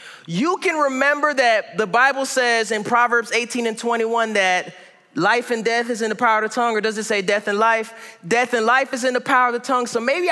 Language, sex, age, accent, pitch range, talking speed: English, male, 30-49, American, 210-265 Hz, 245 wpm